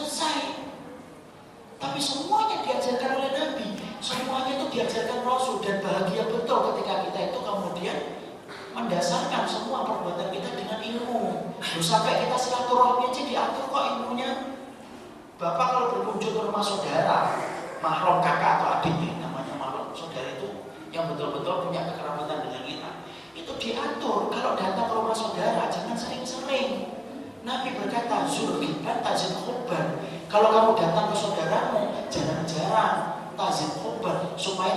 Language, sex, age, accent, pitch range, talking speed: Indonesian, male, 40-59, native, 200-255 Hz, 130 wpm